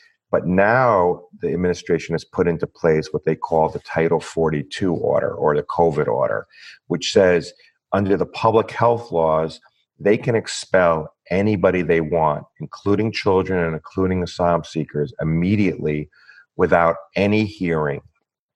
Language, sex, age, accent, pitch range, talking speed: English, male, 40-59, American, 80-100 Hz, 135 wpm